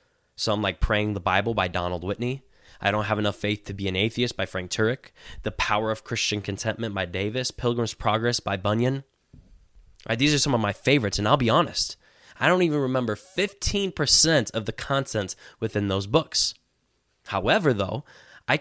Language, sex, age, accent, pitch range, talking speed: English, male, 10-29, American, 100-125 Hz, 175 wpm